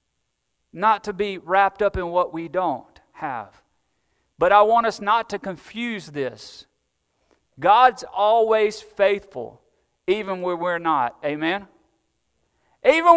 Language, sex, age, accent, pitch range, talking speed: English, male, 40-59, American, 165-250 Hz, 125 wpm